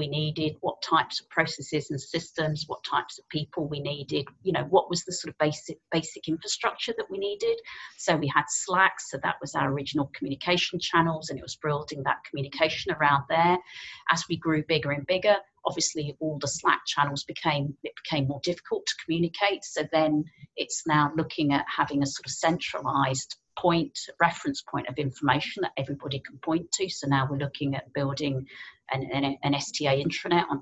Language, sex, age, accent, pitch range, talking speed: English, female, 40-59, British, 140-165 Hz, 185 wpm